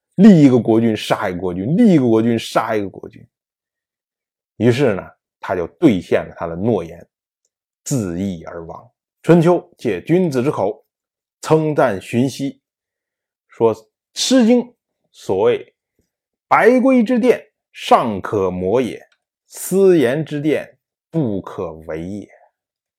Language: Chinese